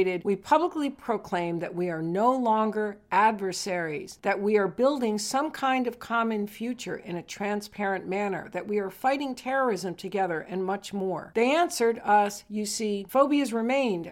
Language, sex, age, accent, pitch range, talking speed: English, female, 50-69, American, 185-245 Hz, 160 wpm